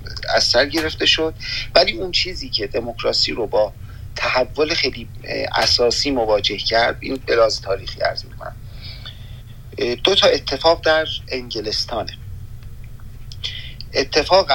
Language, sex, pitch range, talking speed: Persian, male, 110-125 Hz, 105 wpm